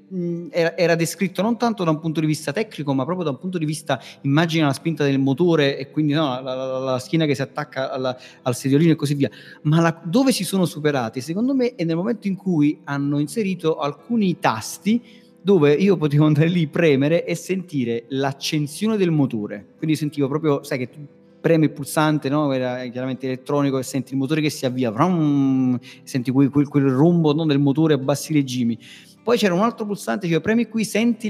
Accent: native